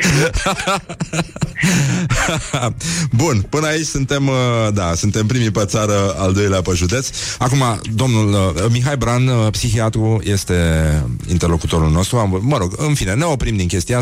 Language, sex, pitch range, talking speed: Romanian, male, 85-130 Hz, 135 wpm